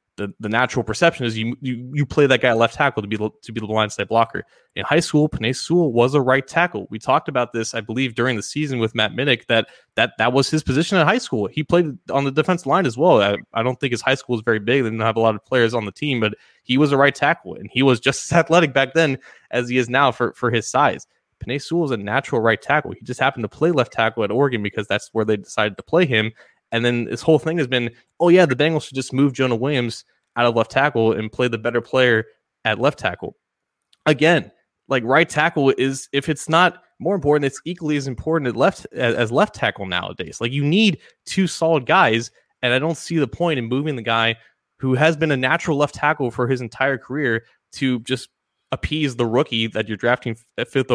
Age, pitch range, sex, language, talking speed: 20-39, 115-150 Hz, male, English, 250 wpm